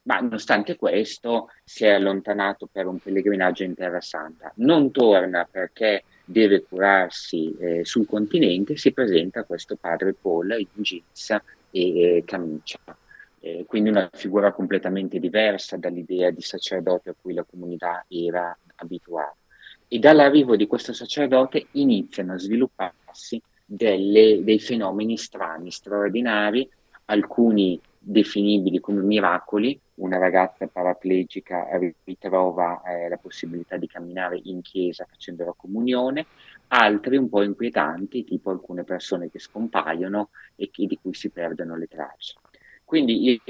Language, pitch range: Italian, 90-115 Hz